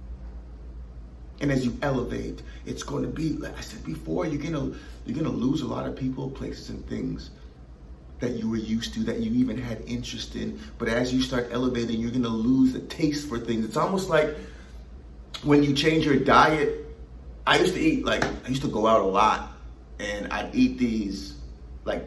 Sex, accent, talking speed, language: male, American, 205 wpm, English